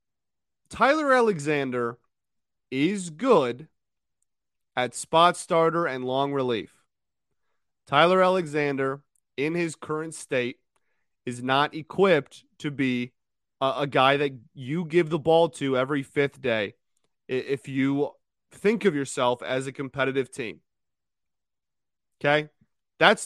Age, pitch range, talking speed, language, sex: 30-49, 125-165 Hz, 115 wpm, English, male